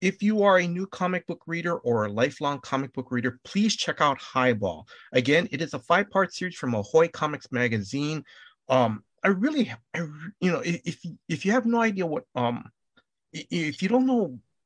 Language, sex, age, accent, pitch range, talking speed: English, male, 30-49, American, 120-165 Hz, 190 wpm